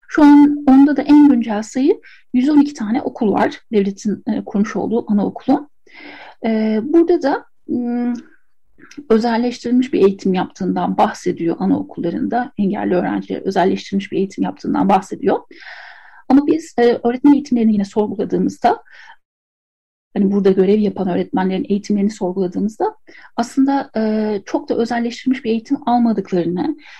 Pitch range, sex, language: 205-285 Hz, female, Turkish